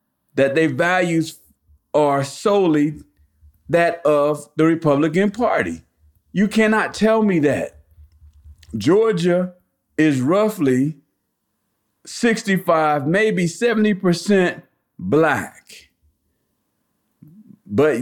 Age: 50-69